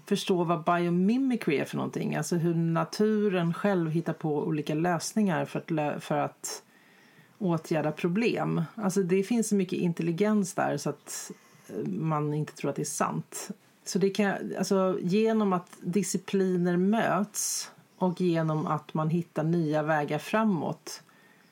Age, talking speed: 40-59, 140 wpm